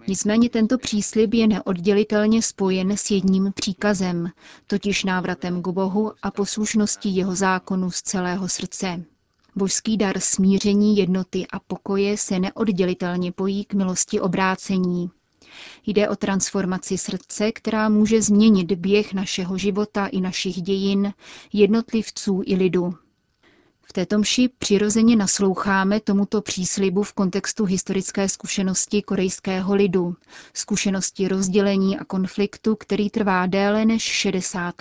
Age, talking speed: 30-49, 120 wpm